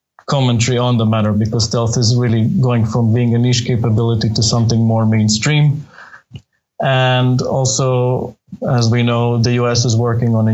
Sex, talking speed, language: male, 165 wpm, English